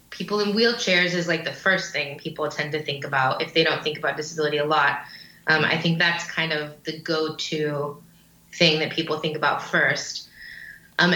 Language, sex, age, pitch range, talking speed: English, female, 20-39, 155-195 Hz, 195 wpm